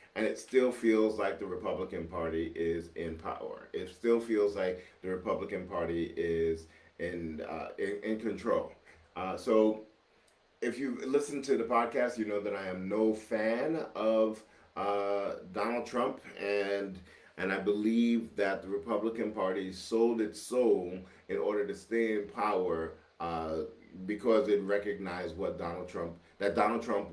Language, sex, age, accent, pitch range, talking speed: English, male, 40-59, American, 90-110 Hz, 155 wpm